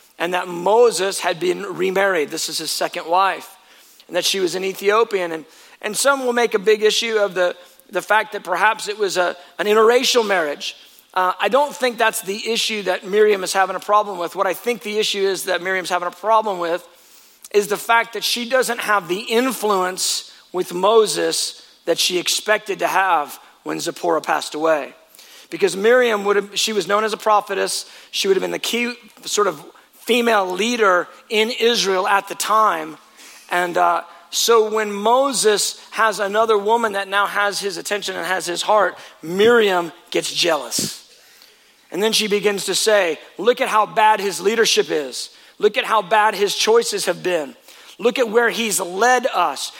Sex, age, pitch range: male, 40-59, 190-230 Hz